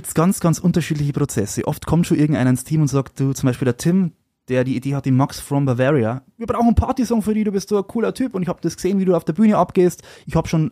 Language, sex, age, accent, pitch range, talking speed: German, male, 20-39, German, 125-160 Hz, 285 wpm